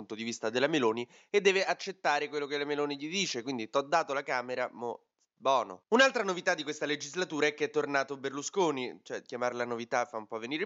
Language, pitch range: Italian, 125-165 Hz